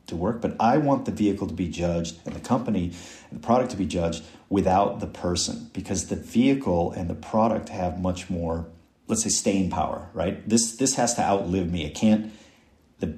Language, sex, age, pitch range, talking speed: English, male, 40-59, 85-100 Hz, 205 wpm